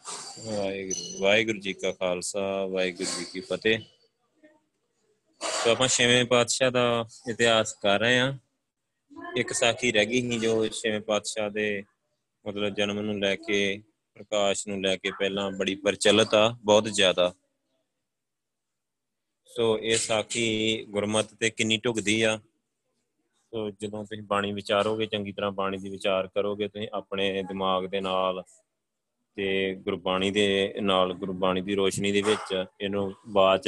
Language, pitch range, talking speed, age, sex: Punjabi, 95-110 Hz, 135 wpm, 20-39, male